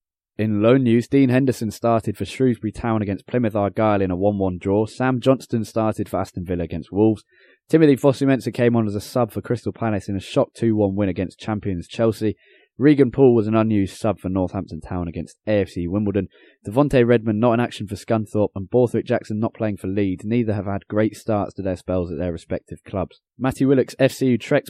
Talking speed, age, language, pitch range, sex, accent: 205 wpm, 20-39, English, 95-120 Hz, male, British